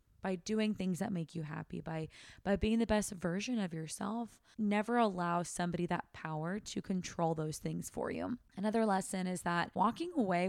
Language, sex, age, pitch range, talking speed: English, female, 20-39, 175-215 Hz, 185 wpm